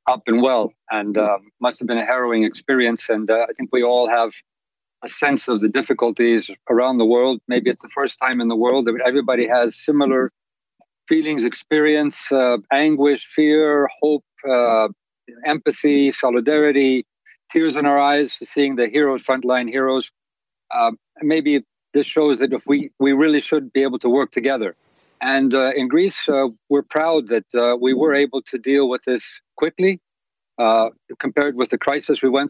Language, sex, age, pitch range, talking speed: English, male, 50-69, 125-150 Hz, 175 wpm